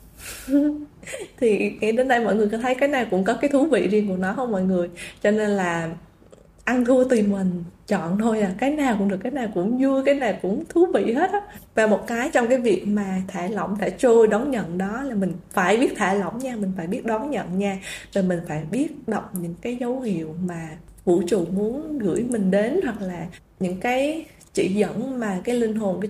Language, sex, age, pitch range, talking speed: Vietnamese, female, 20-39, 185-235 Hz, 225 wpm